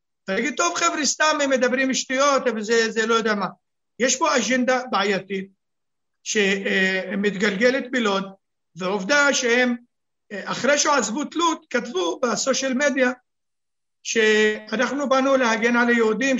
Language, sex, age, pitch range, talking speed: Hebrew, male, 50-69, 200-255 Hz, 115 wpm